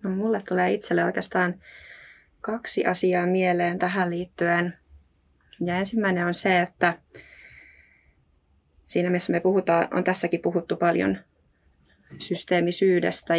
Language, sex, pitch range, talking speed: Finnish, female, 165-180 Hz, 110 wpm